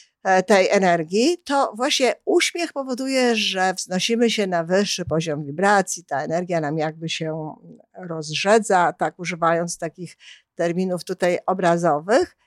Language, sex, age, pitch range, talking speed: Polish, female, 50-69, 170-235 Hz, 120 wpm